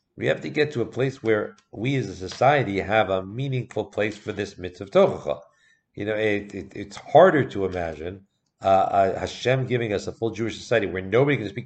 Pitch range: 105-135 Hz